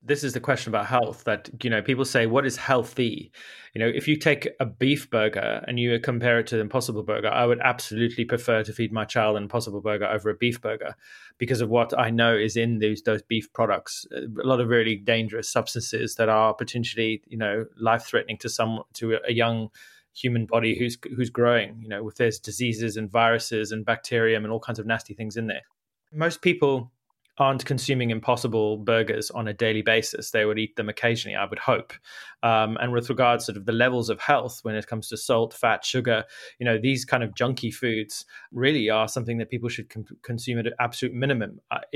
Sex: male